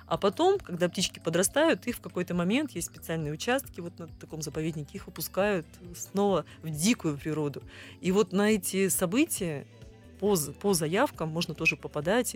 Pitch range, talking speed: 165-215 Hz, 160 wpm